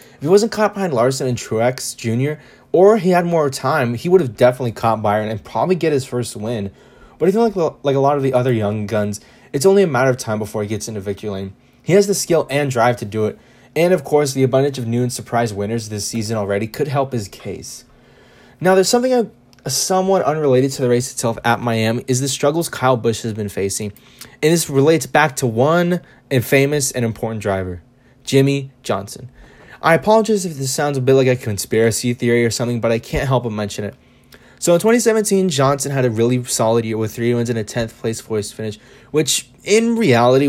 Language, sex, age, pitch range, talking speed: English, male, 20-39, 115-145 Hz, 220 wpm